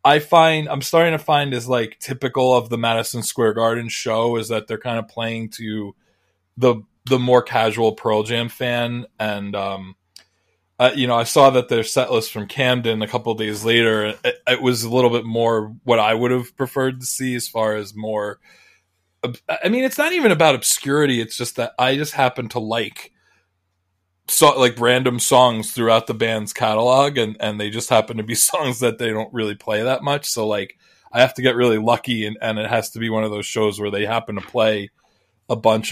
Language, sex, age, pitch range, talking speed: English, male, 20-39, 105-125 Hz, 210 wpm